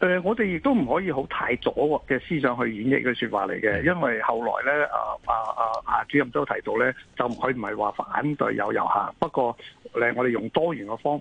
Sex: male